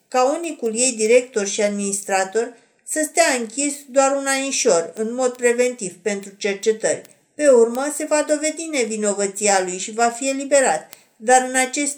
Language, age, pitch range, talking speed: Romanian, 50-69, 215-265 Hz, 155 wpm